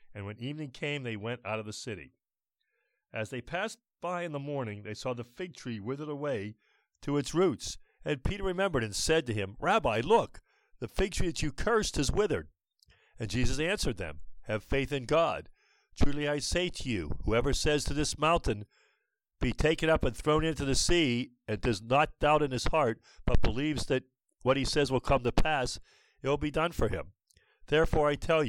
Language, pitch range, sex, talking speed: English, 110-155 Hz, male, 200 wpm